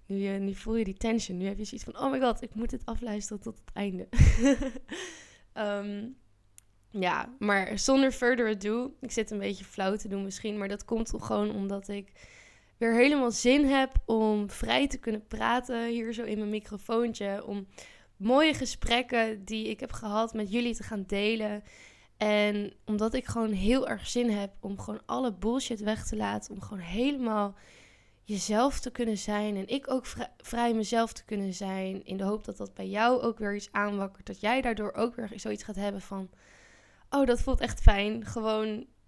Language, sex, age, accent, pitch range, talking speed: Dutch, female, 10-29, Dutch, 200-235 Hz, 190 wpm